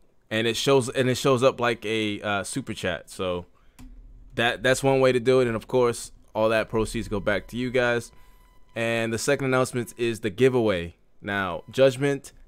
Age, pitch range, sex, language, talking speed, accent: 20-39, 110-130 Hz, male, English, 190 wpm, American